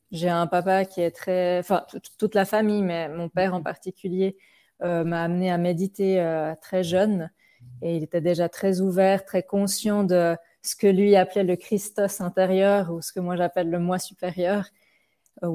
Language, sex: French, female